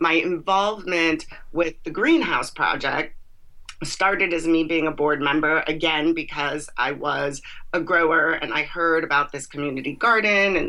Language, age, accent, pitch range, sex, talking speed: English, 30-49, American, 155-190 Hz, female, 150 wpm